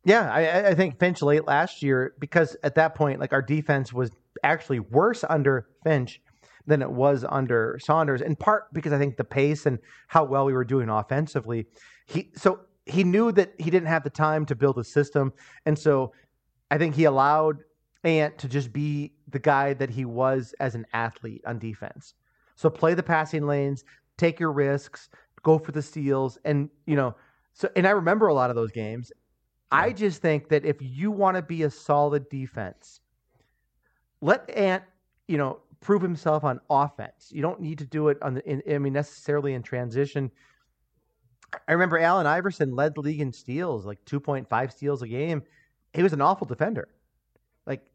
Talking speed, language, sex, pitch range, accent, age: 190 wpm, English, male, 130-155 Hz, American, 30-49